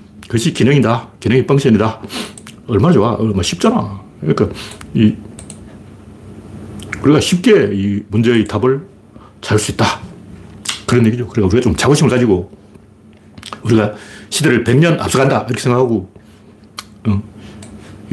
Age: 40-59